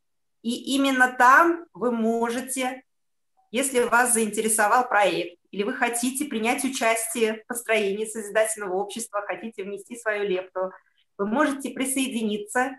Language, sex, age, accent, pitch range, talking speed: Russian, female, 30-49, native, 200-245 Hz, 115 wpm